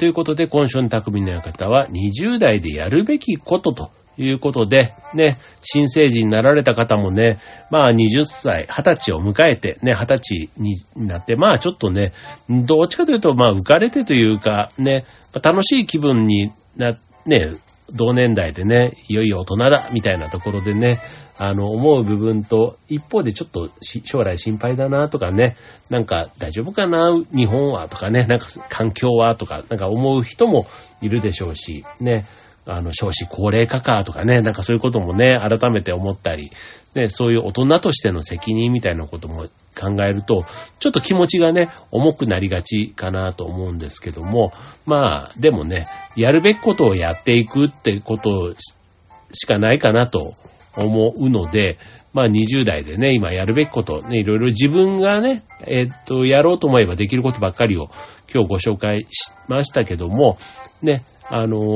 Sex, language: male, Japanese